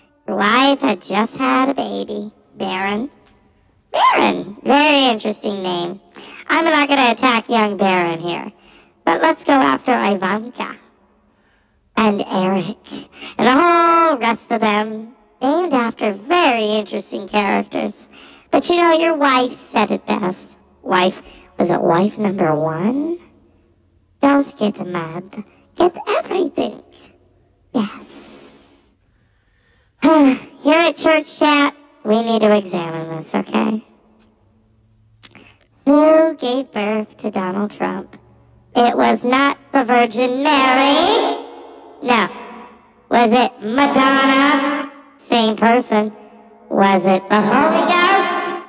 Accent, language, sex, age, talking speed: American, English, male, 40-59, 110 wpm